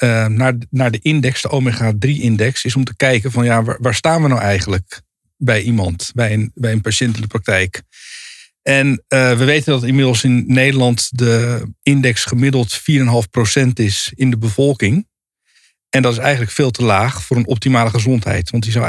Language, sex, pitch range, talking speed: Dutch, male, 115-140 Hz, 195 wpm